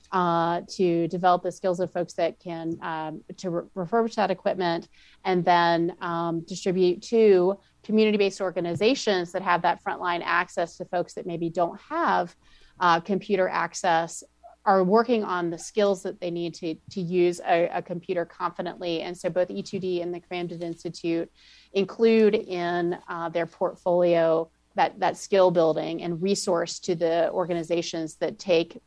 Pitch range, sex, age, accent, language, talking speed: 170-190 Hz, female, 30-49, American, English, 155 wpm